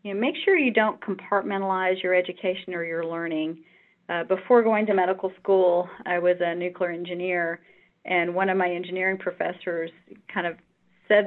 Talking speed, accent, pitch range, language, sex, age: 170 wpm, American, 180-200 Hz, English, female, 40-59